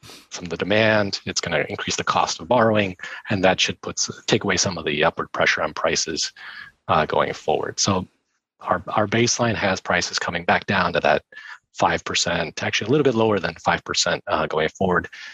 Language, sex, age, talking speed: English, male, 30-49, 200 wpm